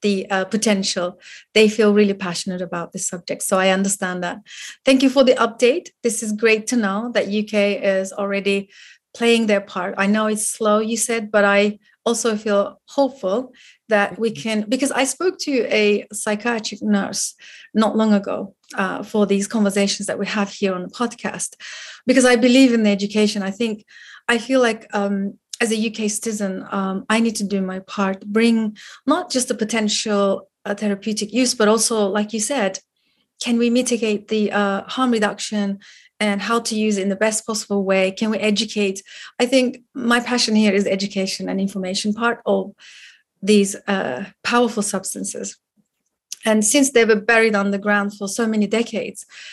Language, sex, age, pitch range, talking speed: English, female, 30-49, 200-230 Hz, 180 wpm